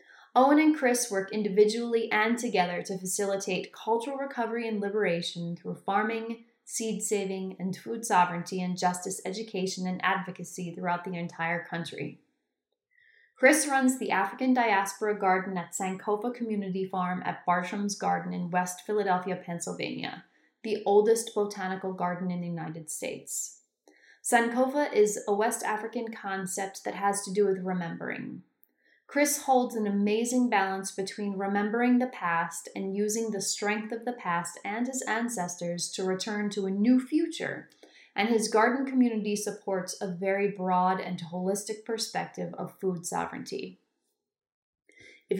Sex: female